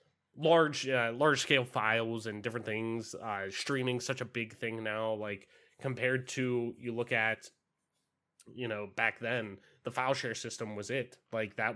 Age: 20-39